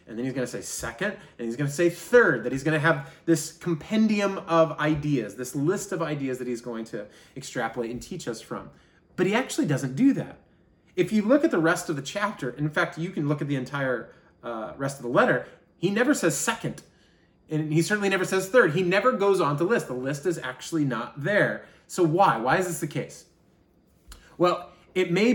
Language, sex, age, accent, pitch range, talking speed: English, male, 30-49, American, 130-170 Hz, 225 wpm